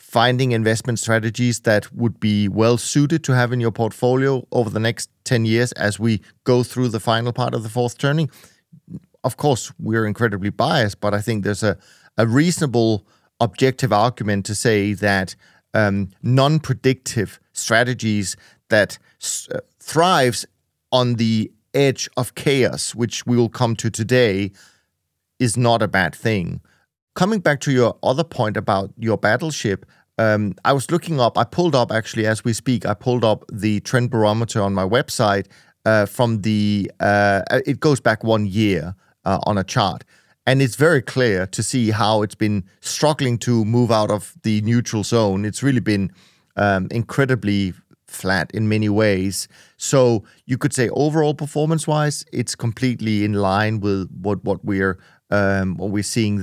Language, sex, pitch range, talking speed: English, male, 105-125 Hz, 160 wpm